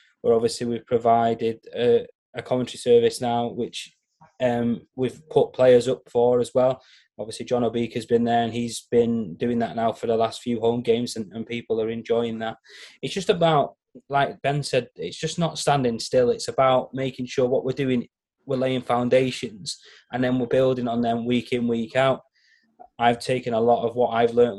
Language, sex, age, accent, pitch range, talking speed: English, male, 20-39, British, 120-135 Hz, 195 wpm